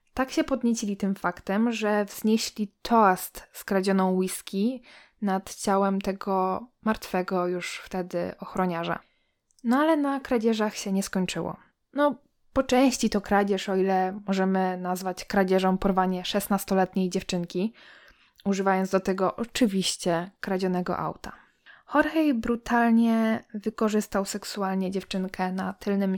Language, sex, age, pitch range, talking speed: Polish, female, 20-39, 190-230 Hz, 115 wpm